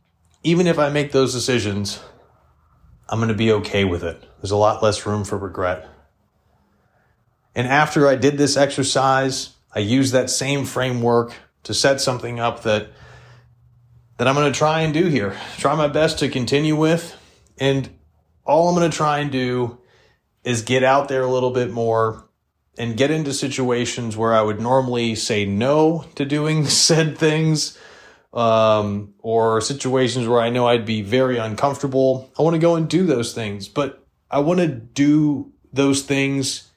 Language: English